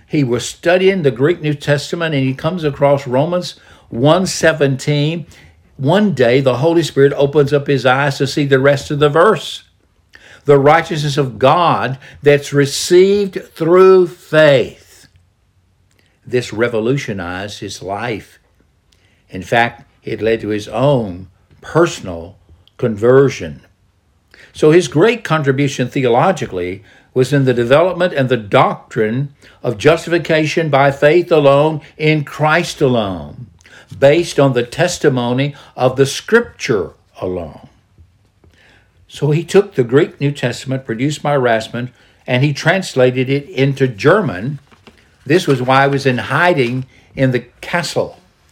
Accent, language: American, English